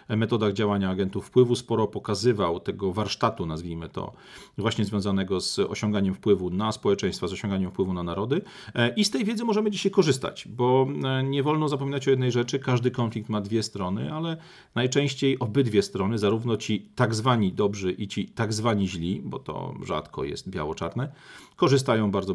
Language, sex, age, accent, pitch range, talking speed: Polish, male, 40-59, native, 105-140 Hz, 165 wpm